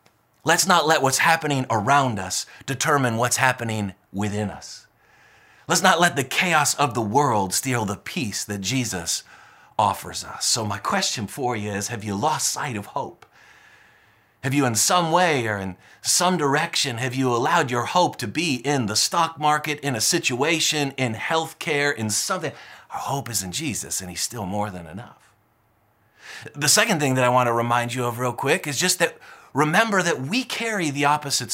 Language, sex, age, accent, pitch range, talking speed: English, male, 30-49, American, 125-190 Hz, 185 wpm